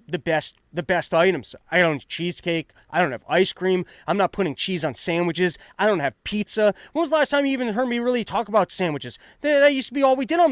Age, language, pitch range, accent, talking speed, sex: 30-49, English, 150-200 Hz, American, 255 wpm, male